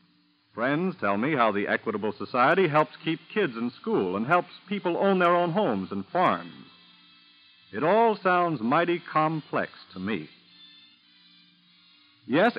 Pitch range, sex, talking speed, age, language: 115-180 Hz, male, 140 wpm, 50-69, English